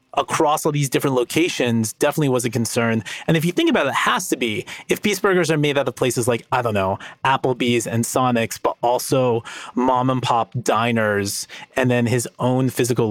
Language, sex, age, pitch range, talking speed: English, male, 30-49, 115-140 Hz, 205 wpm